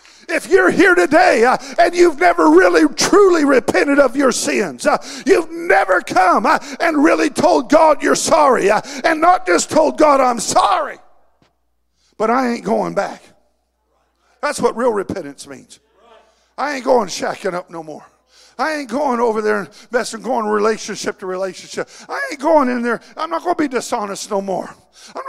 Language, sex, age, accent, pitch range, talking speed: English, male, 50-69, American, 175-260 Hz, 175 wpm